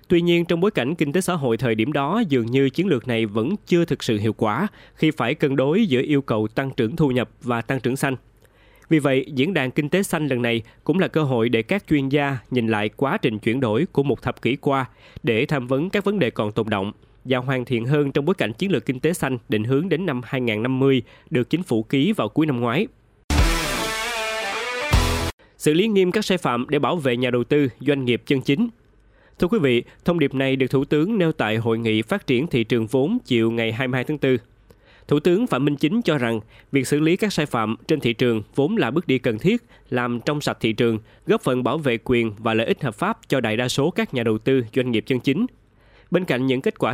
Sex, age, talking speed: male, 20-39, 245 wpm